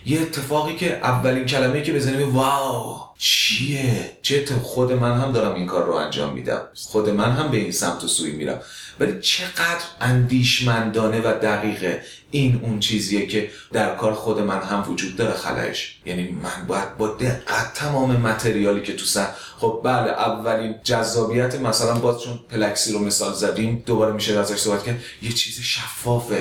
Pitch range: 105-130 Hz